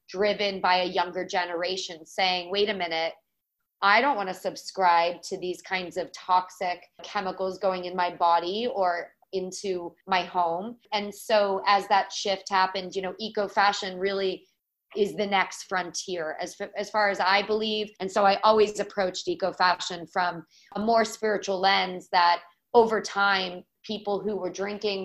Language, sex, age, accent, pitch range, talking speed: English, female, 30-49, American, 180-205 Hz, 160 wpm